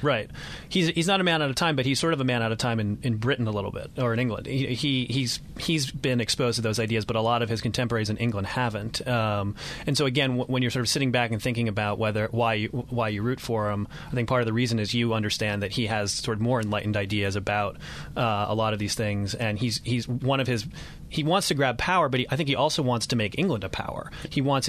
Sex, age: male, 30-49